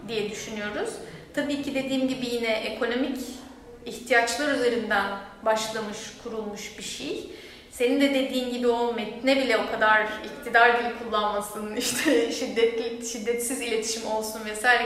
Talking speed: 135 wpm